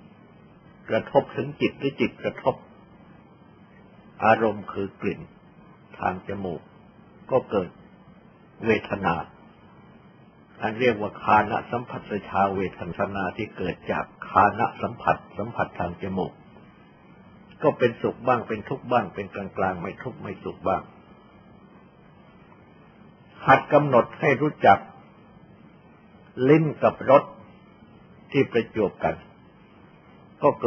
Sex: male